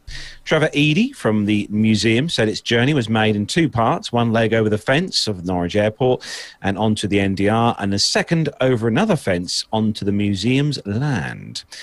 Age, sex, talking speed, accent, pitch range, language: 40-59, male, 180 wpm, British, 95-135 Hz, English